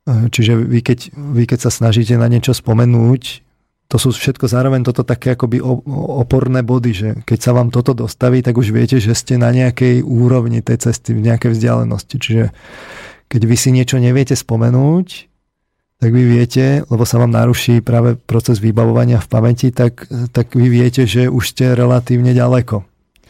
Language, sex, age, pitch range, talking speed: Slovak, male, 40-59, 115-125 Hz, 170 wpm